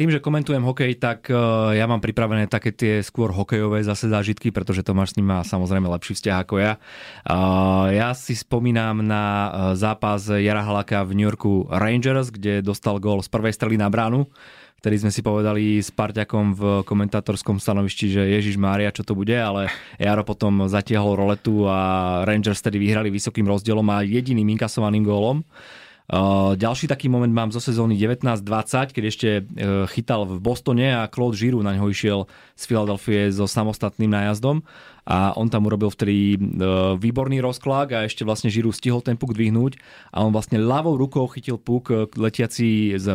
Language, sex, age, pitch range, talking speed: Slovak, male, 20-39, 100-120 Hz, 165 wpm